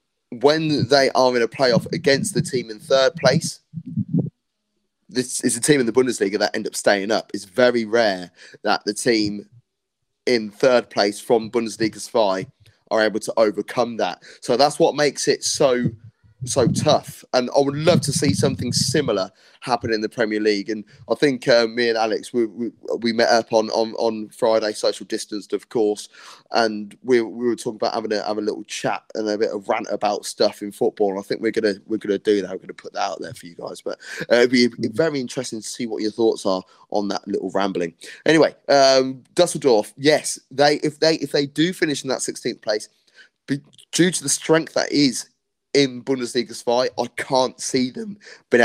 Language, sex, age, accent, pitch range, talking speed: English, male, 20-39, British, 110-135 Hz, 205 wpm